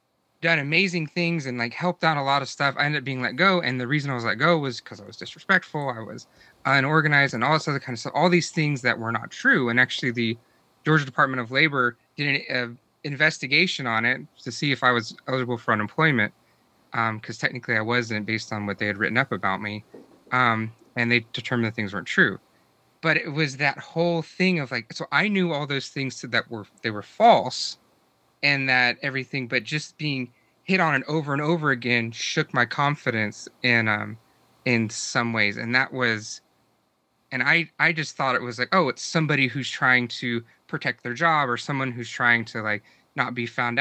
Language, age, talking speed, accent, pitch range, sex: English, 30-49, 215 wpm, American, 120-155 Hz, male